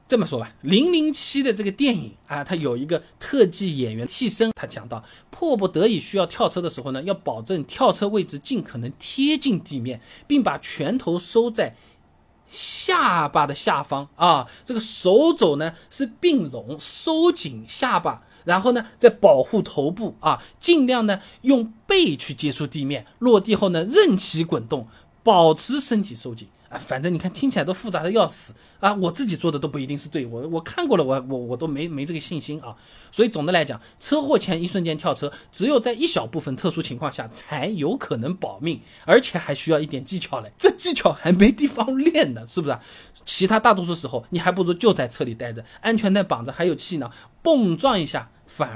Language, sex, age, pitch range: Chinese, male, 20-39, 140-220 Hz